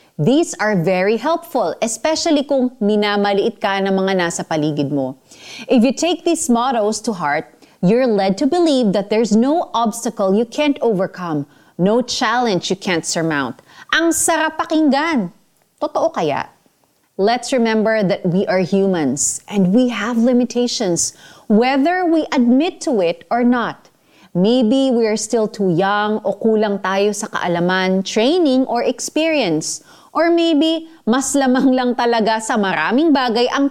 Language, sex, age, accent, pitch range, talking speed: Filipino, female, 30-49, native, 200-280 Hz, 145 wpm